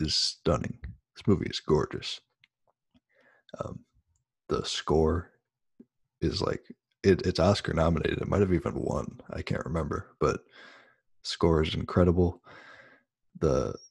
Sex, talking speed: male, 115 wpm